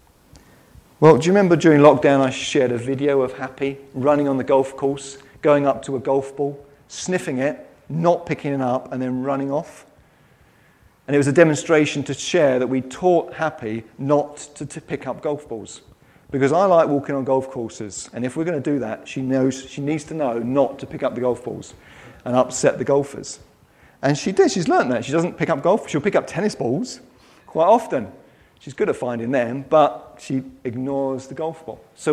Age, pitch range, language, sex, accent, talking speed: 40-59, 135-165 Hz, English, male, British, 210 wpm